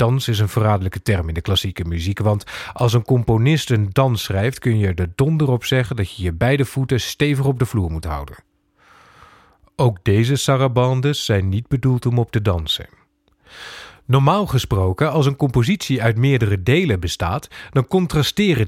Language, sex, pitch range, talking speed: Dutch, male, 100-145 Hz, 175 wpm